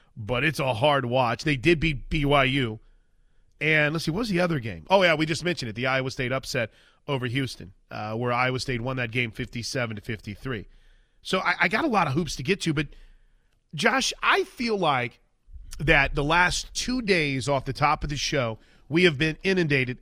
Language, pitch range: English, 125-170 Hz